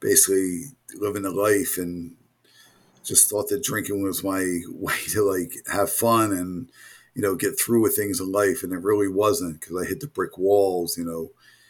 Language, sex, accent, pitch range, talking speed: English, male, American, 95-115 Hz, 190 wpm